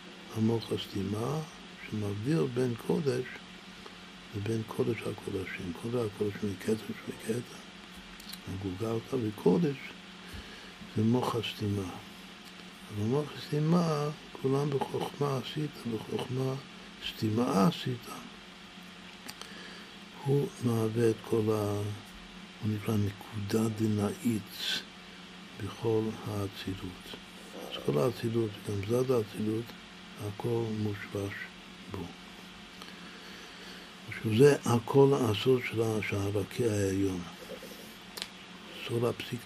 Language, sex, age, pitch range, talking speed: Hebrew, male, 60-79, 100-120 Hz, 80 wpm